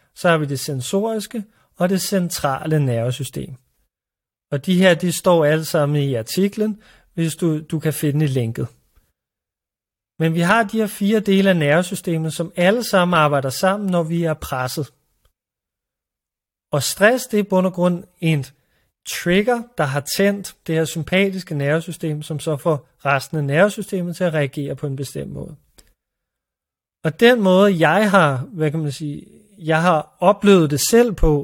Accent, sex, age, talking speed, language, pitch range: native, male, 30-49, 165 wpm, Danish, 145-190 Hz